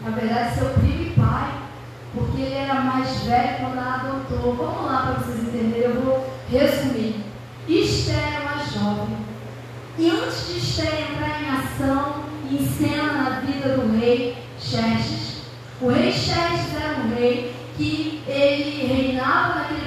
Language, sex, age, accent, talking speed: Portuguese, female, 10-29, Brazilian, 150 wpm